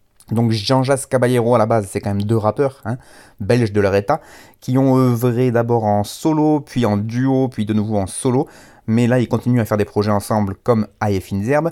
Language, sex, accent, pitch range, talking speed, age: French, male, French, 100-120 Hz, 225 wpm, 30-49